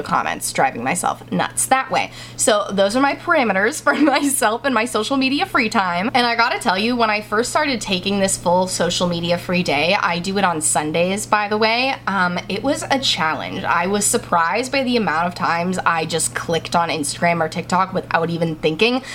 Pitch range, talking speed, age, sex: 175-235 Hz, 205 wpm, 20-39, female